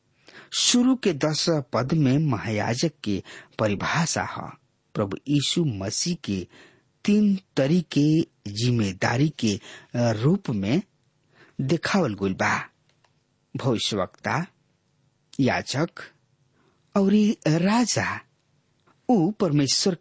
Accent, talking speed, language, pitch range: Indian, 85 wpm, English, 120-180 Hz